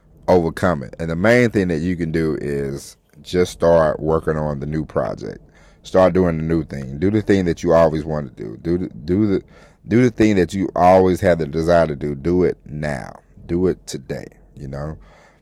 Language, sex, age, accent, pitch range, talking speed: English, male, 30-49, American, 80-90 Hz, 210 wpm